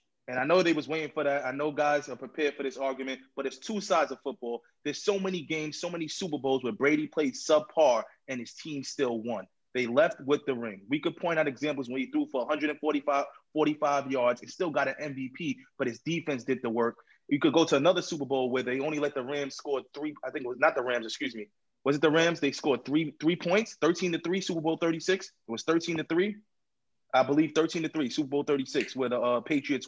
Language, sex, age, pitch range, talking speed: English, male, 20-39, 135-175 Hz, 245 wpm